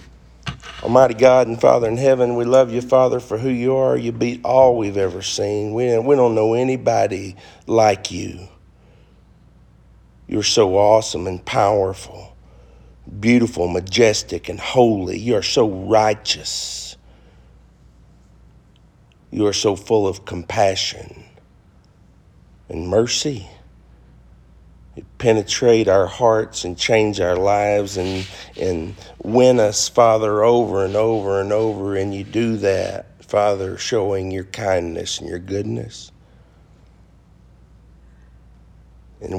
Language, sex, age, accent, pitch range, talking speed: English, male, 50-69, American, 95-140 Hz, 115 wpm